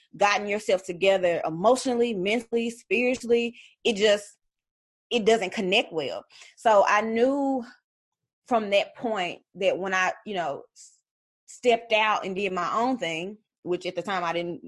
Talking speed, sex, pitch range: 145 wpm, female, 170-215 Hz